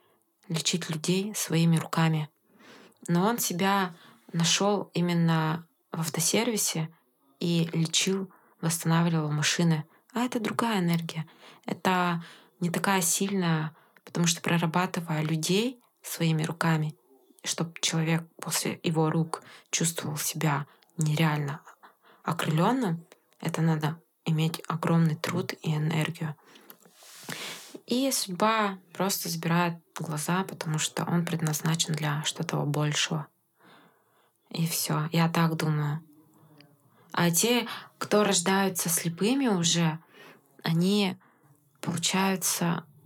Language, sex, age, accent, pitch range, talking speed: Russian, female, 20-39, native, 160-190 Hz, 100 wpm